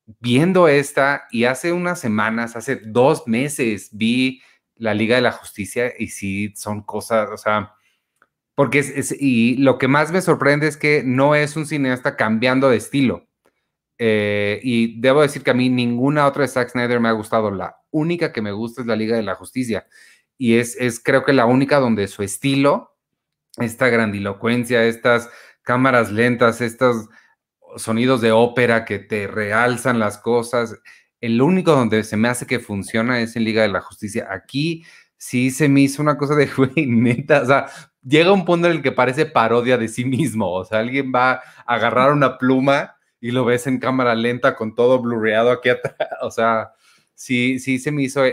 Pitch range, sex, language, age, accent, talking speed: 110-135 Hz, male, Spanish, 30-49, Mexican, 190 wpm